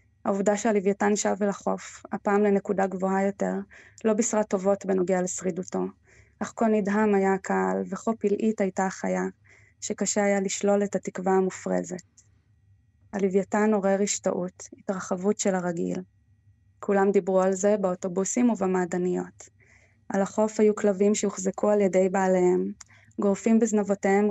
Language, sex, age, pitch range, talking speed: Hebrew, female, 20-39, 175-200 Hz, 125 wpm